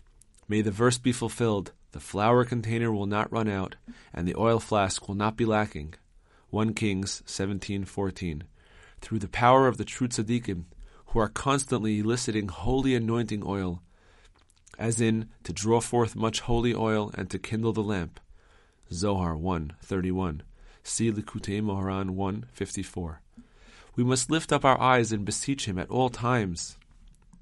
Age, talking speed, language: 40-59, 160 wpm, English